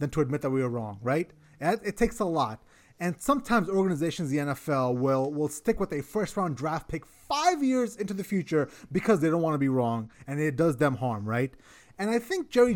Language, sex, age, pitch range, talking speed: English, male, 30-49, 135-185 Hz, 225 wpm